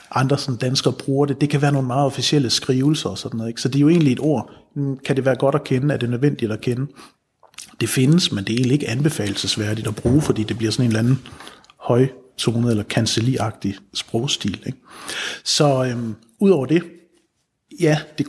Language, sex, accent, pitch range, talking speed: Danish, male, native, 115-145 Hz, 205 wpm